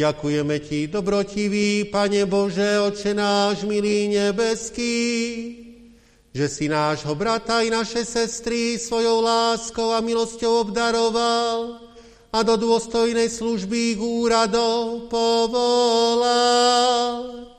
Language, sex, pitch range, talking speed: Slovak, male, 205-230 Hz, 95 wpm